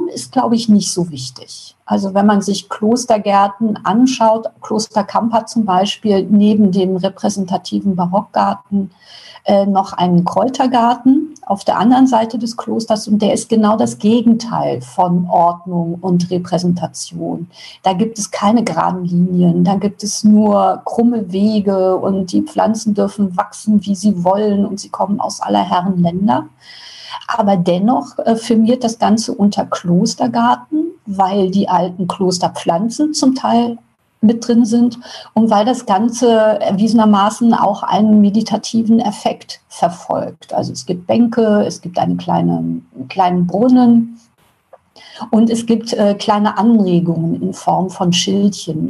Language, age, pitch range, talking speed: German, 50-69, 185-225 Hz, 140 wpm